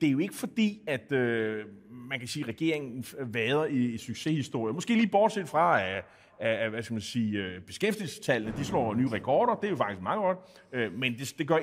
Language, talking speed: Danish, 180 wpm